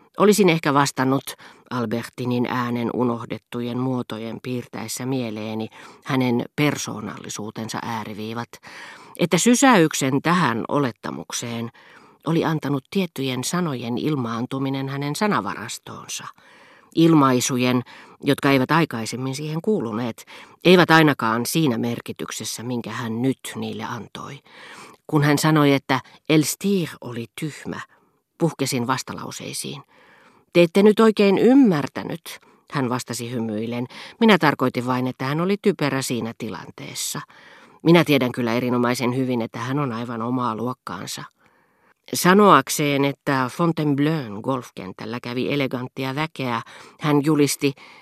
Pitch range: 120-155 Hz